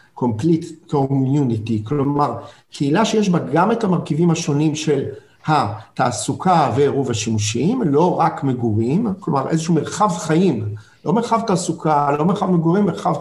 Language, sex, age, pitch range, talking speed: Hebrew, male, 50-69, 135-180 Hz, 125 wpm